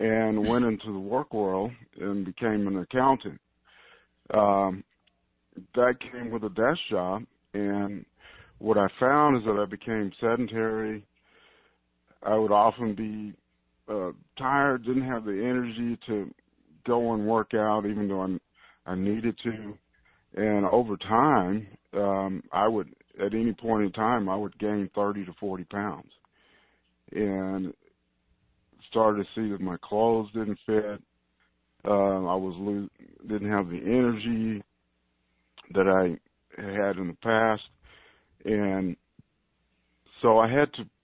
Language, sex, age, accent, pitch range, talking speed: English, male, 50-69, American, 95-110 Hz, 135 wpm